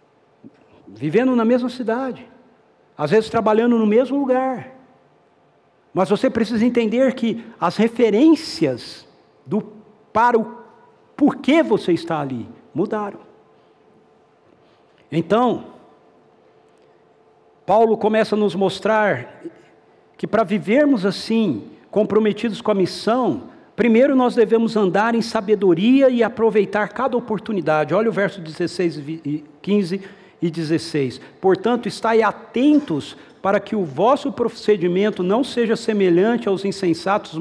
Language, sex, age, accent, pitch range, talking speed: Portuguese, male, 60-79, Brazilian, 170-230 Hz, 110 wpm